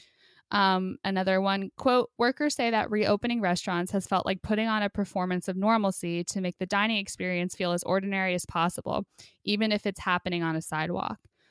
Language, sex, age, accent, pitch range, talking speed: English, female, 10-29, American, 180-210 Hz, 185 wpm